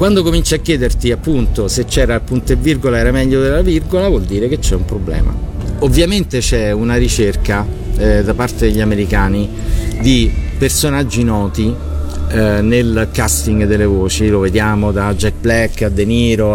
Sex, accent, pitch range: male, native, 100-120 Hz